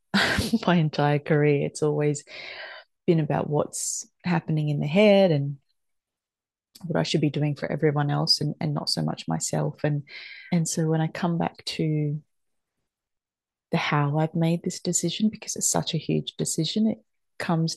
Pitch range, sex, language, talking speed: 145-175 Hz, female, English, 160 wpm